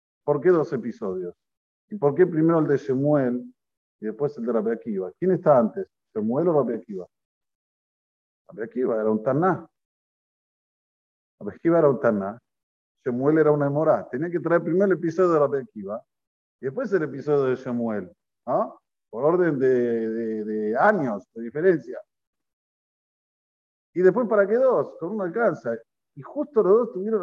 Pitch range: 120-185 Hz